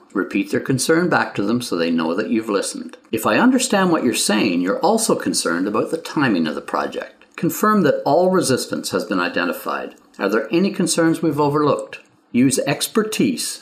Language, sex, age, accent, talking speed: English, male, 50-69, American, 185 wpm